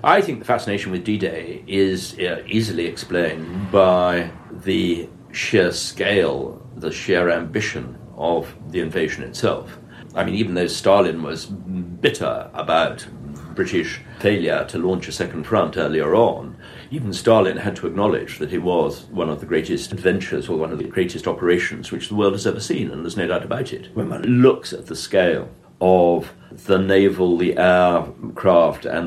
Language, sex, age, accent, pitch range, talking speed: English, male, 60-79, British, 90-105 Hz, 165 wpm